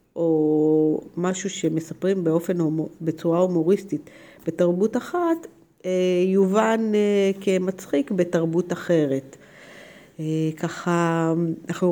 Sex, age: female, 50-69